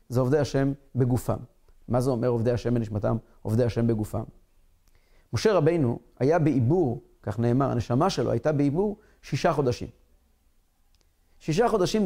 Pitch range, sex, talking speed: 120-165 Hz, male, 135 wpm